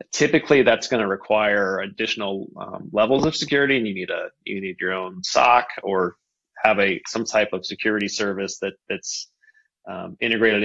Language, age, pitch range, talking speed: English, 30-49, 100-120 Hz, 175 wpm